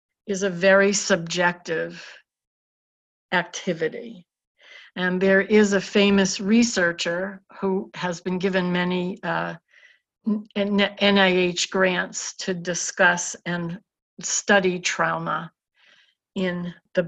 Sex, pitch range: female, 175-205 Hz